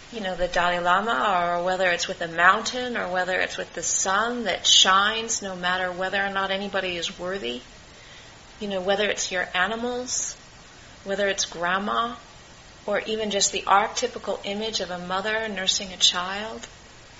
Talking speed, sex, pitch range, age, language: 170 wpm, female, 185-230 Hz, 30-49, English